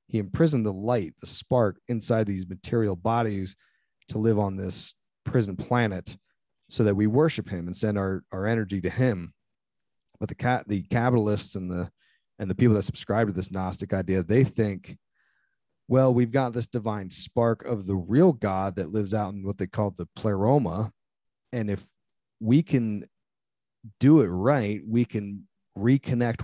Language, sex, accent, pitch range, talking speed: English, male, American, 100-120 Hz, 170 wpm